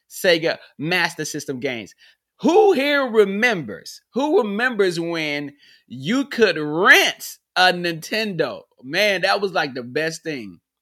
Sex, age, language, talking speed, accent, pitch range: male, 30-49, English, 120 wpm, American, 130-195 Hz